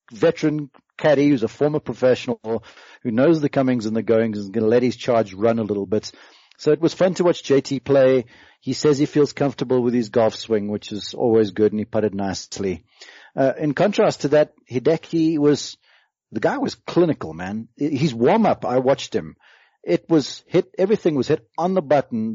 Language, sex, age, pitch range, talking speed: English, male, 40-59, 120-160 Hz, 200 wpm